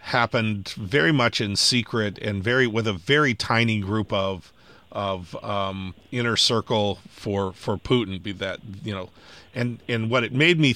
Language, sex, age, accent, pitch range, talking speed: English, male, 40-59, American, 100-120 Hz, 165 wpm